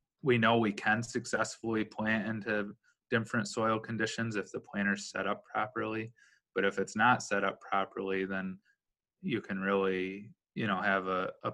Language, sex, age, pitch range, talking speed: English, male, 20-39, 100-105 Hz, 165 wpm